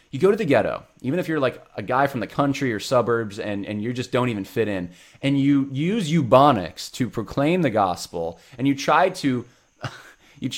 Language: English